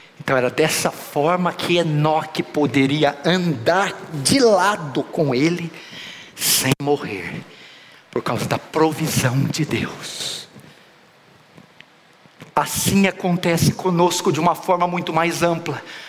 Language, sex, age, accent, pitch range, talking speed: Portuguese, male, 50-69, Brazilian, 195-295 Hz, 110 wpm